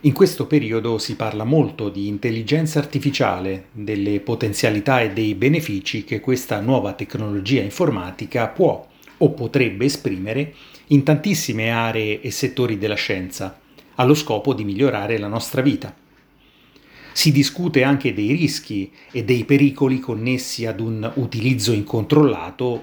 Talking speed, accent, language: 130 wpm, native, Italian